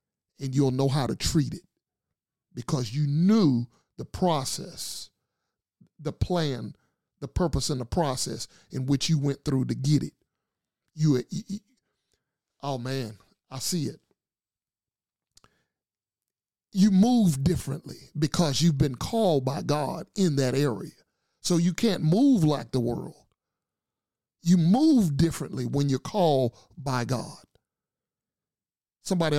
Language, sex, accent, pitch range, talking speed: English, male, American, 130-175 Hz, 130 wpm